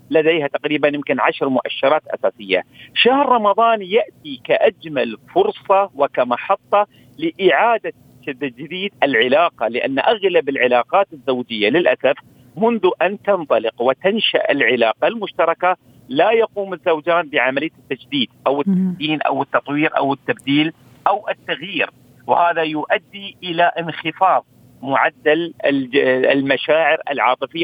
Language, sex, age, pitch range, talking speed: Arabic, male, 50-69, 140-195 Hz, 100 wpm